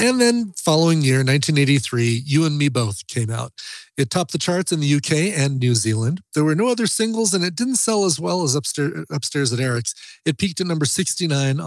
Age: 40-59